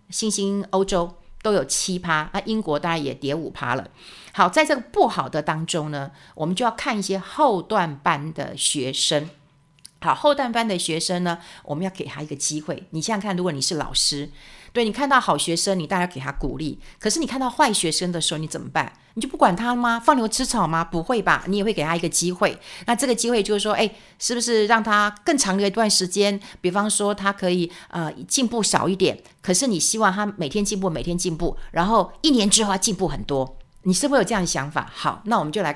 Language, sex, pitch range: Chinese, female, 155-215 Hz